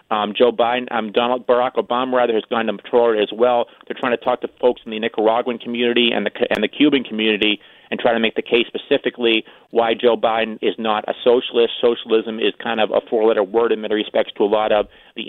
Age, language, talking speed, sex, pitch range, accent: 30-49, English, 230 wpm, male, 110-125 Hz, American